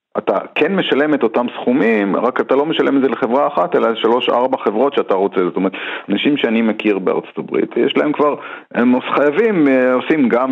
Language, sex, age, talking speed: Hebrew, male, 40-59, 190 wpm